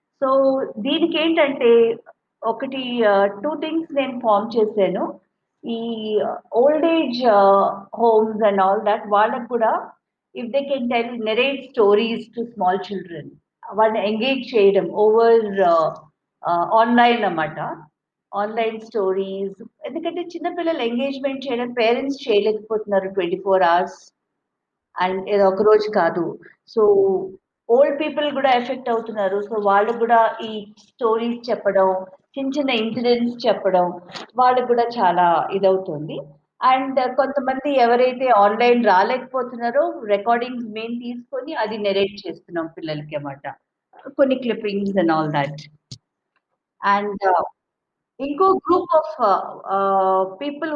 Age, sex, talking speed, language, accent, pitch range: 50-69, female, 110 wpm, Telugu, native, 195-265 Hz